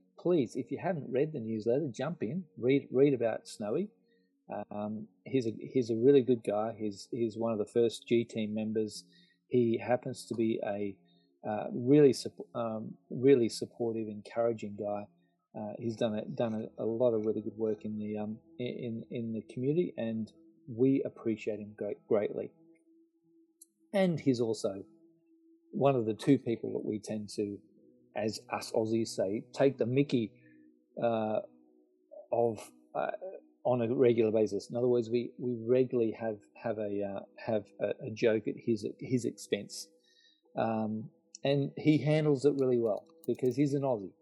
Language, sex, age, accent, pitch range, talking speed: English, male, 40-59, Australian, 105-145 Hz, 170 wpm